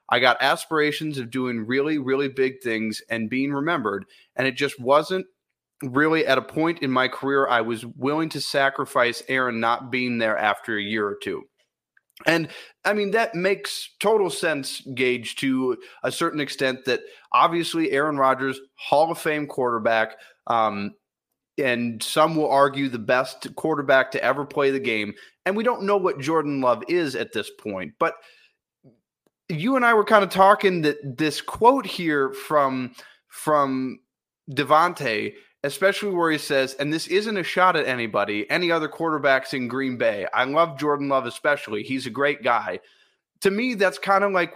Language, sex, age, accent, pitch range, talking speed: English, male, 30-49, American, 130-165 Hz, 170 wpm